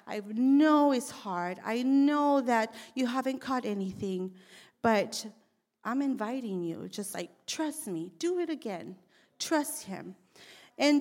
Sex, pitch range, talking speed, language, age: female, 195-235 Hz, 135 wpm, English, 40-59